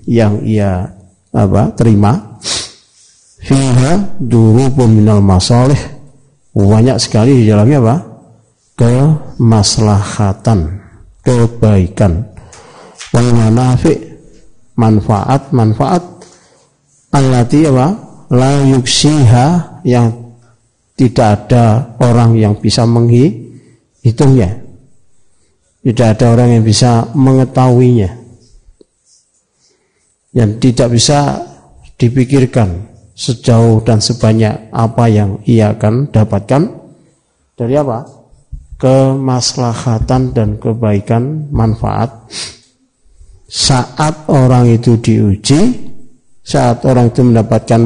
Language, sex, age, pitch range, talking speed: Indonesian, male, 50-69, 110-130 Hz, 75 wpm